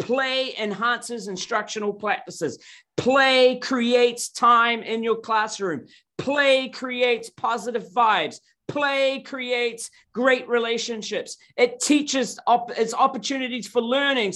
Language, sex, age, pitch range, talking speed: English, male, 40-59, 215-275 Hz, 95 wpm